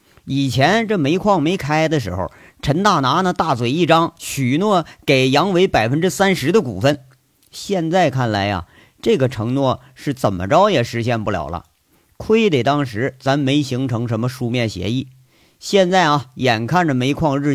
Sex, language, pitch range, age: male, Chinese, 110-160 Hz, 50-69